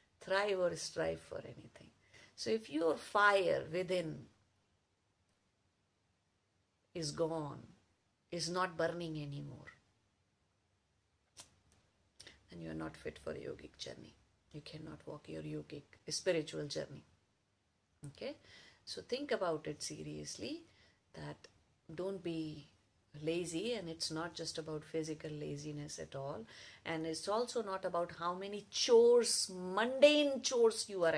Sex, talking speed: female, 120 wpm